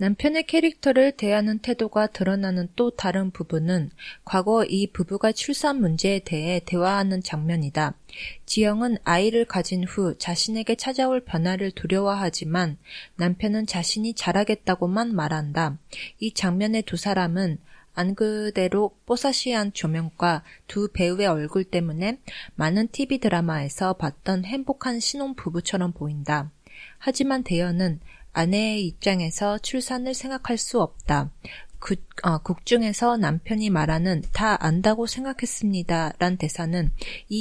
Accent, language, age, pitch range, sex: Korean, Japanese, 20-39, 170-220 Hz, female